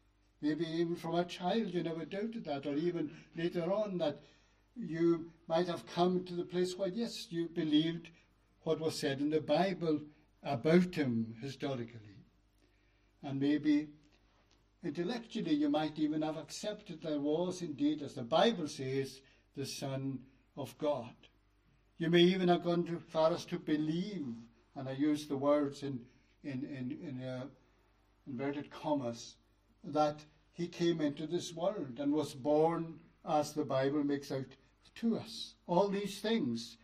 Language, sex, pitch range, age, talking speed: English, male, 125-170 Hz, 60-79, 155 wpm